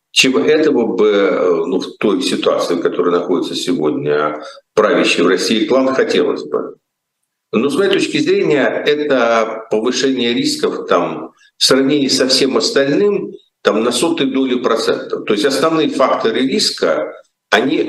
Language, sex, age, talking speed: Russian, male, 50-69, 135 wpm